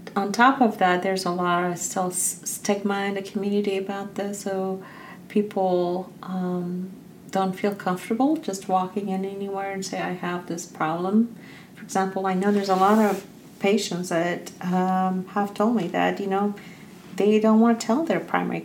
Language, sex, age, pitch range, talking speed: English, female, 40-59, 175-200 Hz, 175 wpm